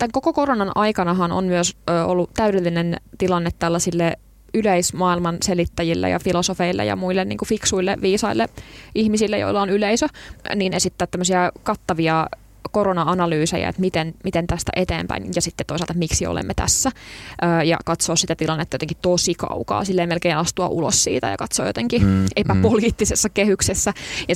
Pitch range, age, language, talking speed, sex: 165-190 Hz, 20-39, Finnish, 145 wpm, female